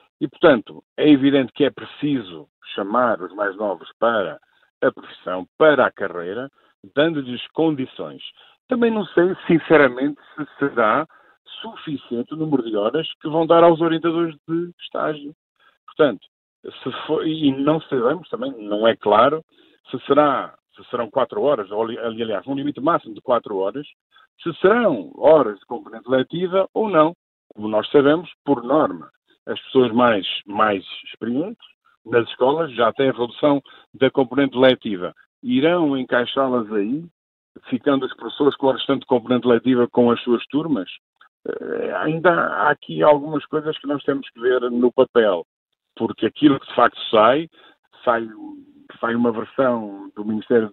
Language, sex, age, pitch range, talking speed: Portuguese, male, 50-69, 125-155 Hz, 150 wpm